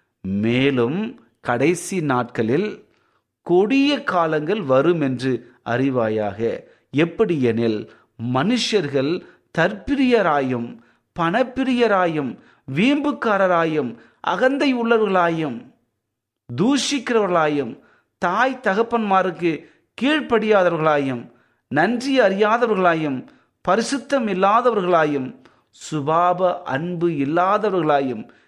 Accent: native